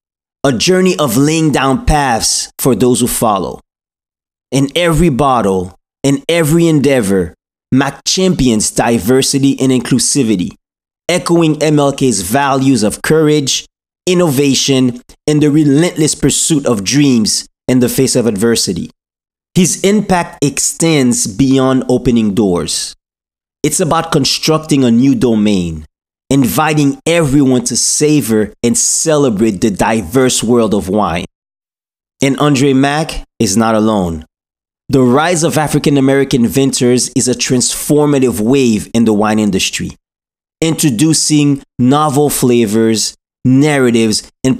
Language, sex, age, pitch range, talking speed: English, male, 30-49, 115-150 Hz, 115 wpm